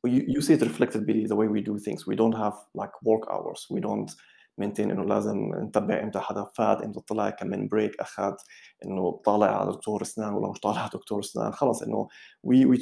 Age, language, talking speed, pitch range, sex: 30-49, English, 125 wpm, 110-125 Hz, male